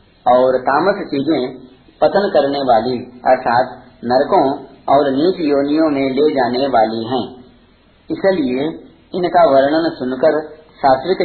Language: Hindi